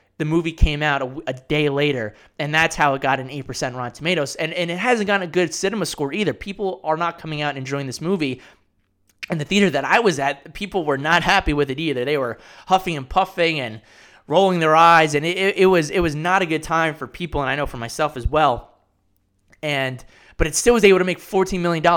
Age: 20-39